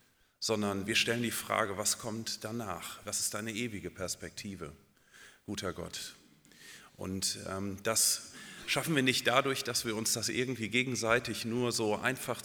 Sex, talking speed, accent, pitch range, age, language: male, 145 wpm, German, 90-110 Hz, 40-59, German